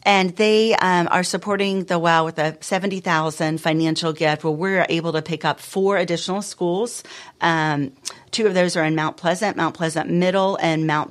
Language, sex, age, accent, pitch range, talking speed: English, female, 40-59, American, 150-180 Hz, 190 wpm